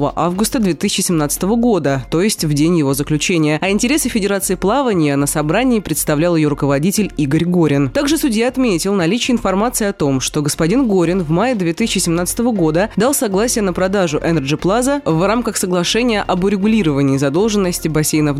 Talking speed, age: 155 wpm, 20-39